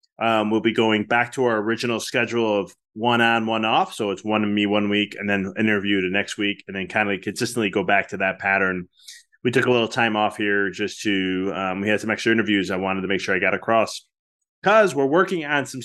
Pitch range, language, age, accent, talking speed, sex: 110-140 Hz, English, 20-39, American, 245 wpm, male